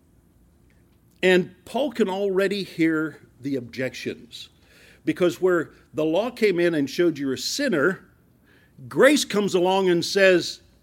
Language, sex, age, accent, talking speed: English, male, 50-69, American, 125 wpm